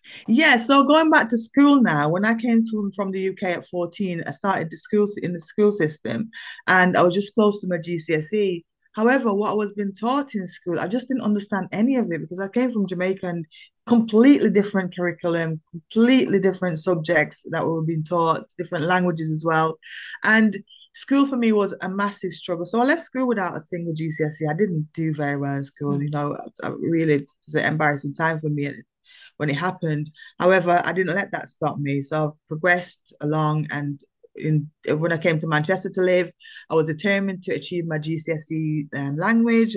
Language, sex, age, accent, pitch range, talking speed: English, female, 20-39, British, 160-205 Hz, 205 wpm